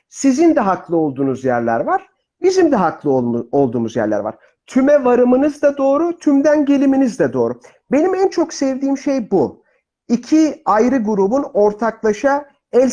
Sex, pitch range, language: male, 195-290 Hz, Turkish